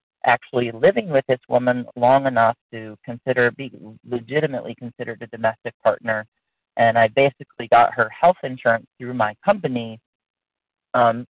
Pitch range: 120-150 Hz